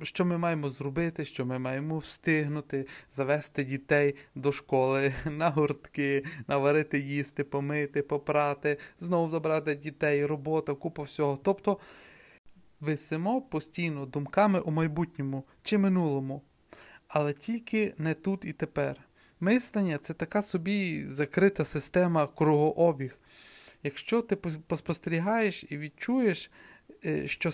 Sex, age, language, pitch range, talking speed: male, 30-49, Ukrainian, 140-170 Hz, 115 wpm